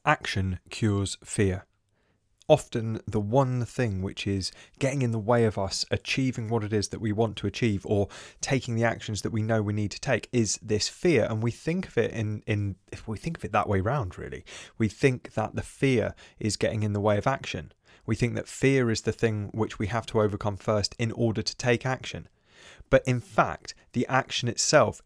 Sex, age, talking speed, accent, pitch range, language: male, 20-39, 215 wpm, British, 105-130 Hz, English